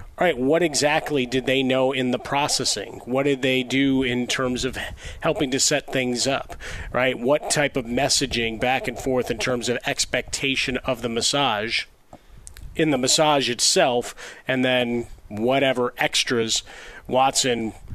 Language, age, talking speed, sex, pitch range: English, 30-49, 155 wpm, male, 120-140 Hz